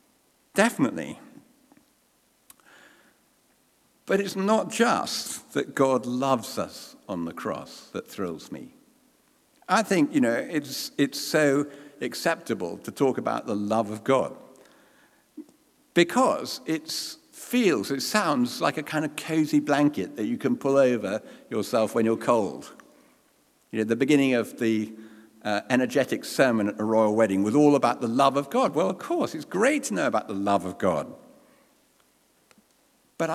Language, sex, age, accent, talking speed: English, male, 50-69, British, 150 wpm